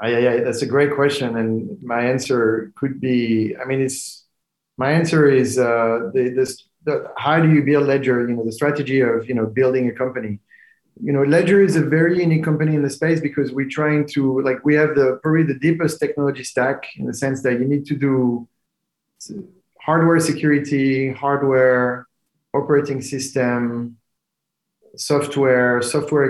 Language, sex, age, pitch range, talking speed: English, male, 30-49, 120-150 Hz, 170 wpm